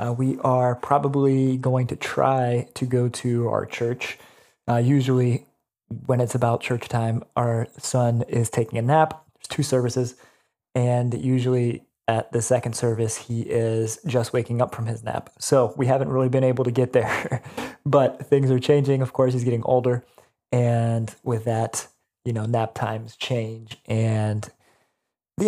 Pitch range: 120-135 Hz